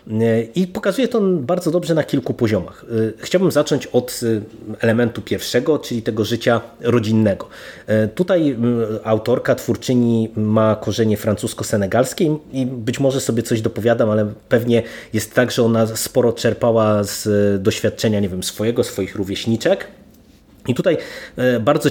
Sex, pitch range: male, 110-120 Hz